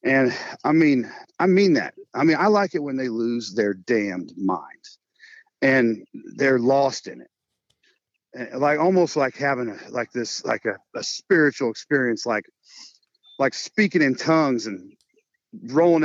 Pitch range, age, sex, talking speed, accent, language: 115-170 Hz, 40-59, male, 155 wpm, American, English